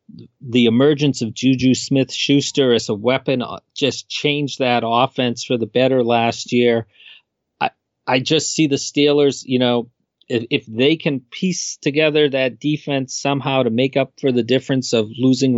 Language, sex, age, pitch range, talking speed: English, male, 40-59, 120-140 Hz, 160 wpm